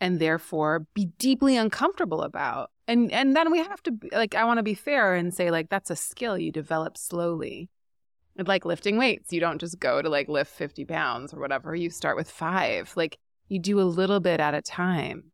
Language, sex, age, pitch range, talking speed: English, female, 30-49, 150-185 Hz, 220 wpm